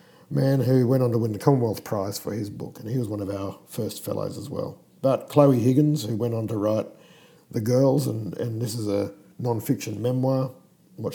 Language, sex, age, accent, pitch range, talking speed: English, male, 50-69, Australian, 110-145 Hz, 215 wpm